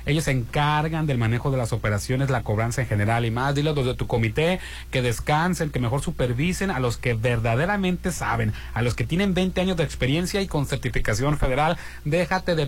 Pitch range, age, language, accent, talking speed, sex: 120-155 Hz, 40-59, Spanish, Mexican, 200 wpm, male